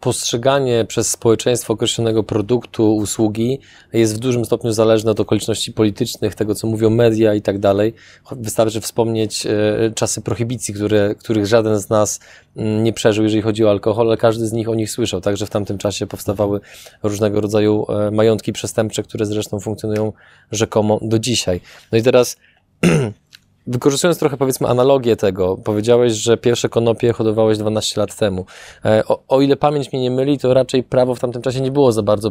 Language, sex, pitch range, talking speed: Polish, male, 110-120 Hz, 170 wpm